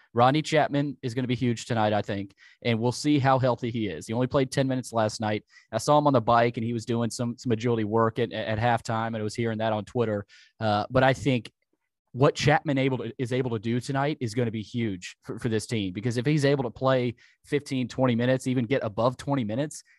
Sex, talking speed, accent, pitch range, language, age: male, 255 wpm, American, 115-140 Hz, English, 20-39